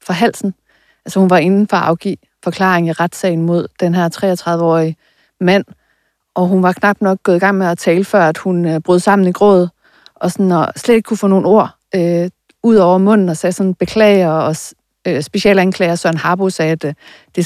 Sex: female